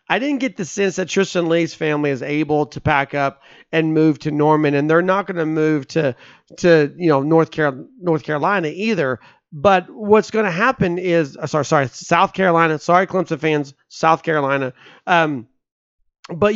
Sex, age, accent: male, 30-49, American